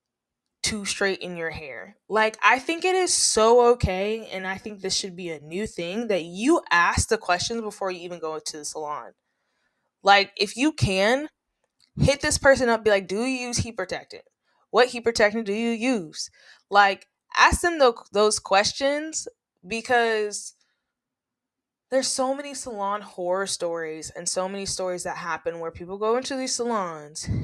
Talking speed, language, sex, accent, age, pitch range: 170 wpm, English, female, American, 20-39, 190-250 Hz